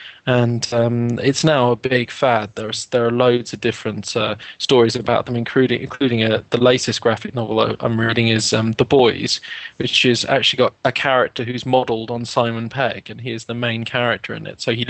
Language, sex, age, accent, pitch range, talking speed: English, male, 20-39, British, 115-130 Hz, 195 wpm